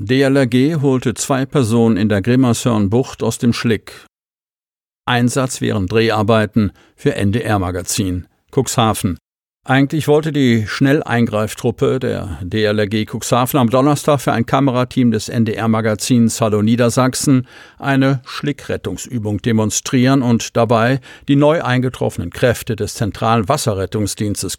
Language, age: German, 50-69